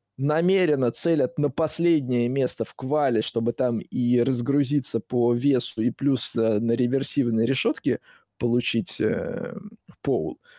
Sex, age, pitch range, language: male, 20-39, 120-160 Hz, Russian